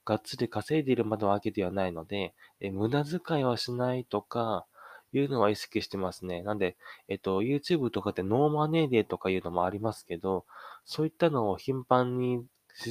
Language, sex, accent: Japanese, male, native